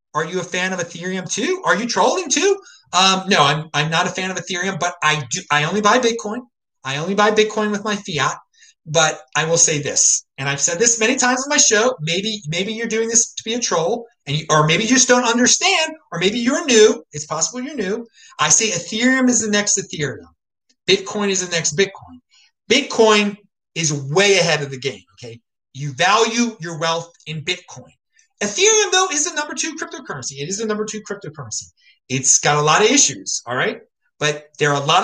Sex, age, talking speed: male, 30-49, 215 wpm